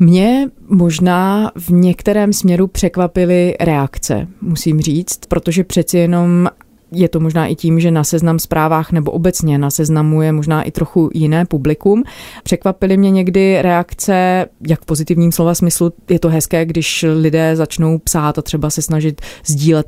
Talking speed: 155 wpm